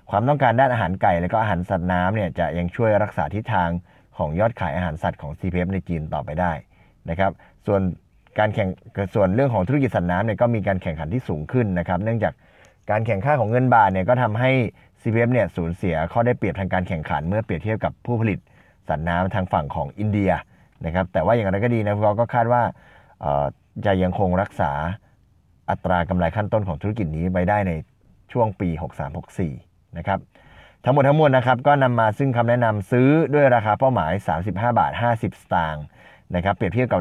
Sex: male